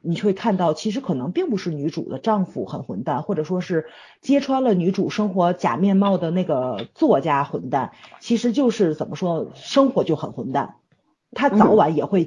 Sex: female